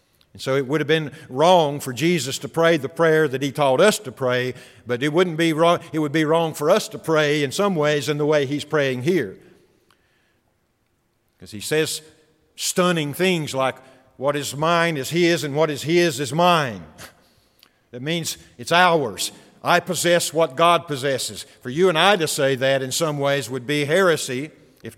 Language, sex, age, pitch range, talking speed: English, male, 50-69, 130-165 Hz, 195 wpm